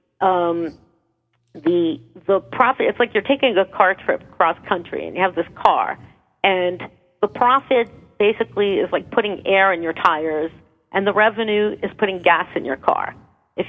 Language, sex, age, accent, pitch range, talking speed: English, female, 40-59, American, 185-245 Hz, 170 wpm